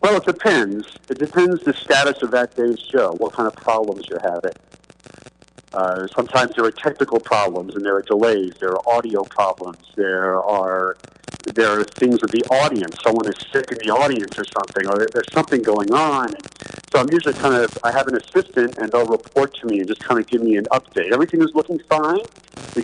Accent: American